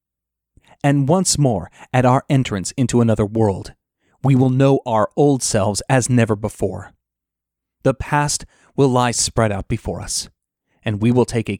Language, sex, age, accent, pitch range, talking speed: English, male, 30-49, American, 105-140 Hz, 160 wpm